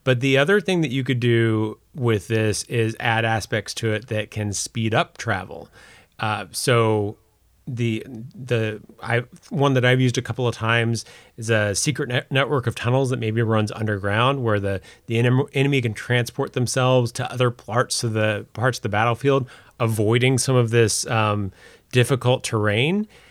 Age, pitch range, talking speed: 30-49, 105-130 Hz, 170 wpm